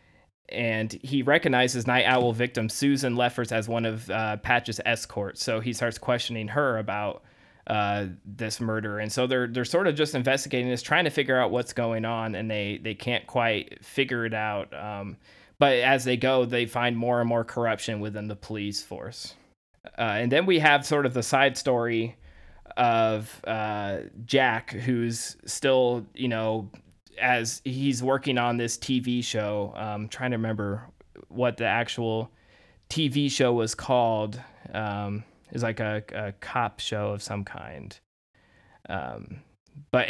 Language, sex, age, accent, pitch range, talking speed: English, male, 20-39, American, 110-130 Hz, 165 wpm